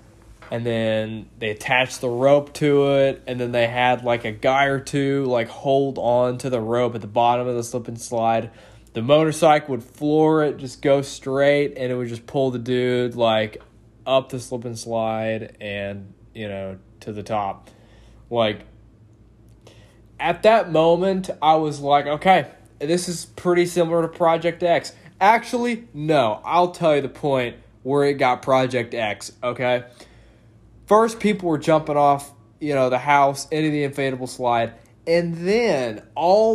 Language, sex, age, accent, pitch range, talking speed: English, male, 20-39, American, 115-155 Hz, 170 wpm